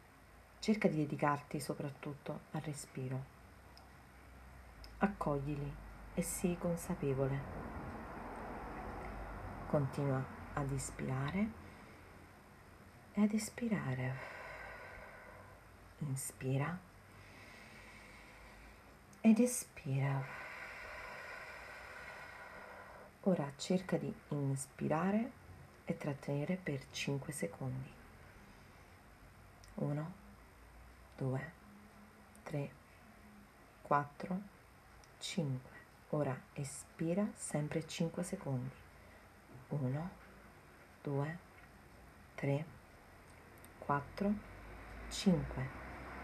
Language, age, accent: Italian, 40-59, native